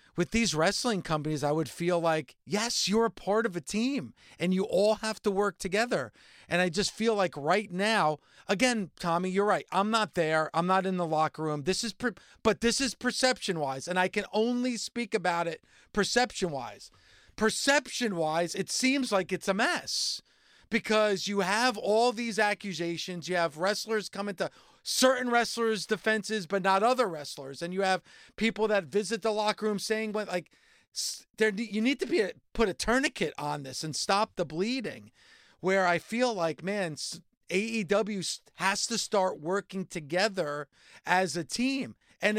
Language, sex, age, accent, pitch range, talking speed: English, male, 40-59, American, 180-225 Hz, 175 wpm